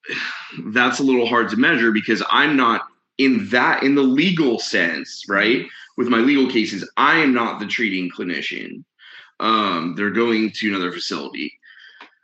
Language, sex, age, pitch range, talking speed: English, male, 20-39, 95-120 Hz, 155 wpm